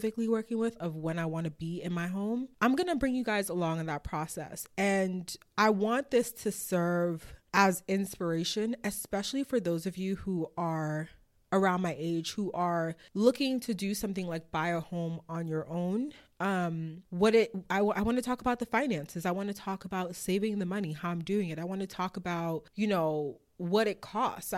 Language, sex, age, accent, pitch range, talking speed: English, female, 20-39, American, 165-210 Hz, 205 wpm